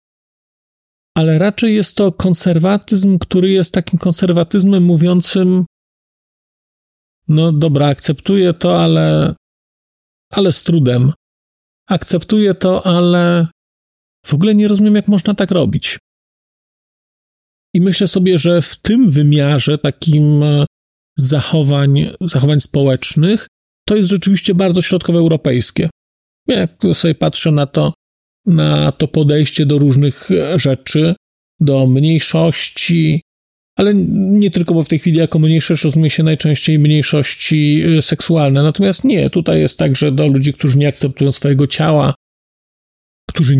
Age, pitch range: 40-59, 140-180 Hz